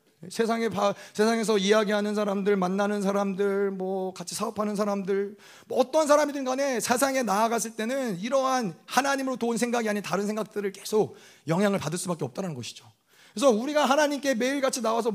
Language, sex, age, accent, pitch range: Korean, male, 30-49, native, 155-230 Hz